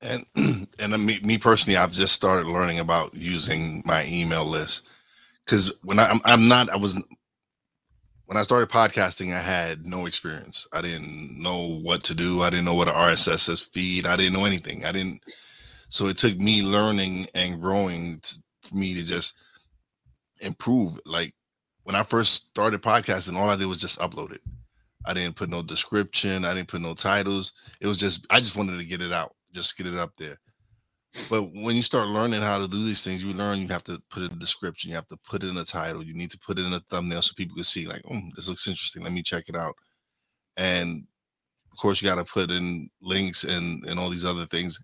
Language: English